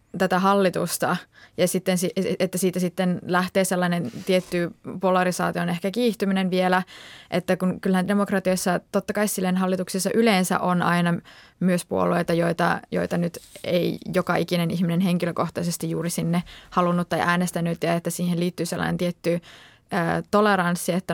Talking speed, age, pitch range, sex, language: 135 wpm, 20-39, 170-190 Hz, female, Finnish